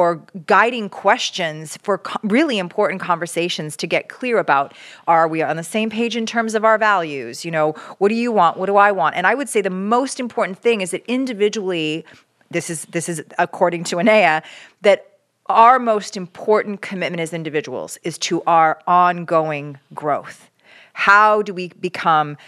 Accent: American